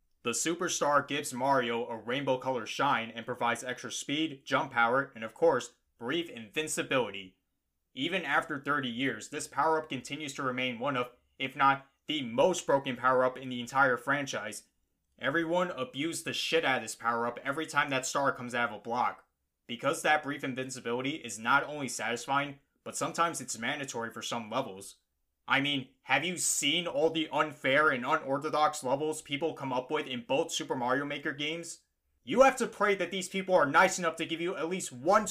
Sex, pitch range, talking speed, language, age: male, 120-160 Hz, 185 wpm, English, 20-39